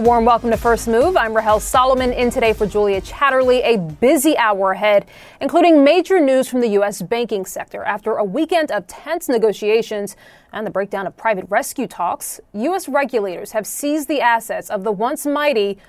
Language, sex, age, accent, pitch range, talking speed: English, female, 30-49, American, 210-275 Hz, 180 wpm